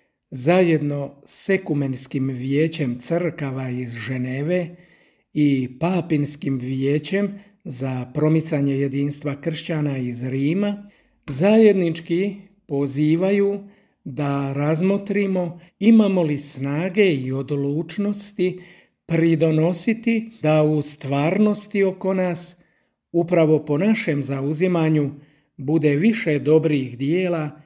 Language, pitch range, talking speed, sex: Croatian, 145-190 Hz, 85 wpm, male